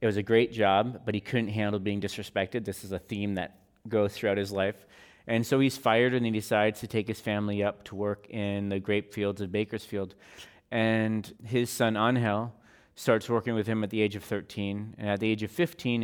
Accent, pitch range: American, 100-115 Hz